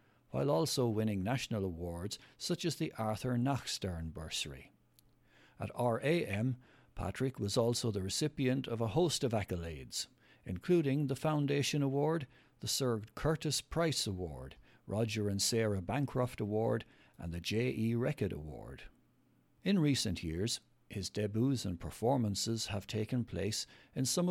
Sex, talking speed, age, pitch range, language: male, 135 wpm, 60-79, 100-130 Hz, English